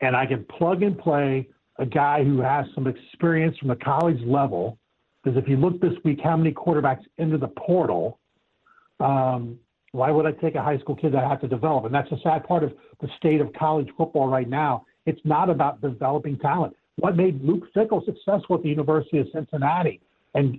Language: English